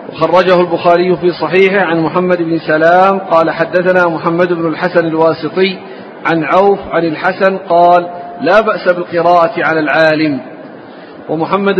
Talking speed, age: 125 wpm, 40-59